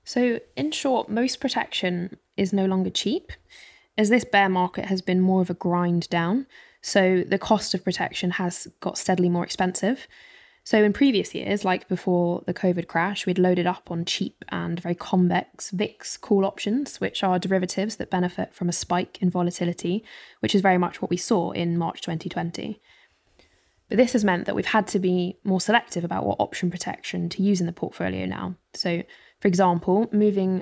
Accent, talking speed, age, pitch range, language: British, 185 wpm, 10-29, 175-205 Hz, English